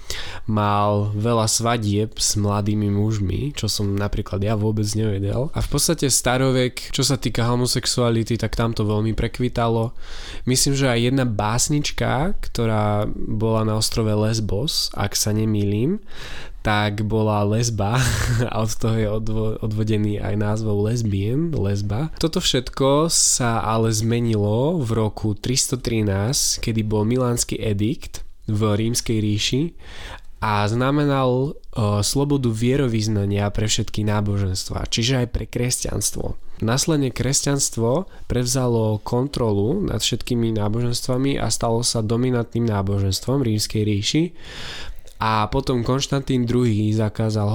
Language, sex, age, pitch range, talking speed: Slovak, male, 20-39, 105-125 Hz, 120 wpm